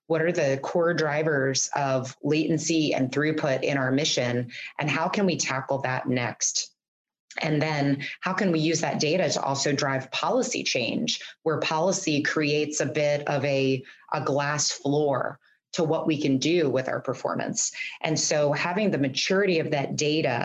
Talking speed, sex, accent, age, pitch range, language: 170 wpm, female, American, 30-49, 135-165 Hz, English